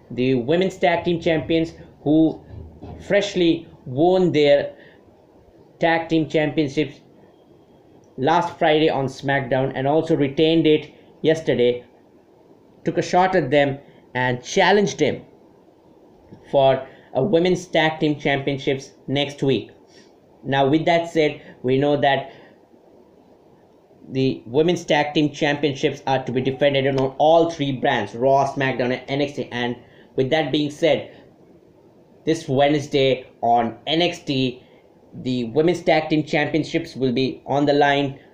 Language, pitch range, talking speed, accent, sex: English, 135-165 Hz, 125 wpm, Indian, male